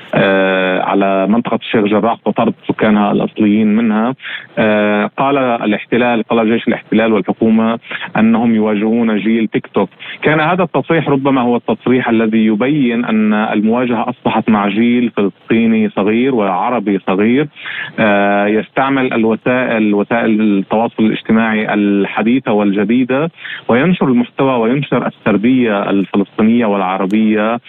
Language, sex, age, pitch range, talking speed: Arabic, male, 30-49, 105-130 Hz, 115 wpm